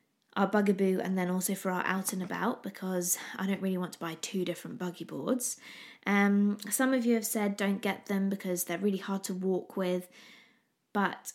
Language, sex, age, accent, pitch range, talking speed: English, female, 20-39, British, 185-230 Hz, 200 wpm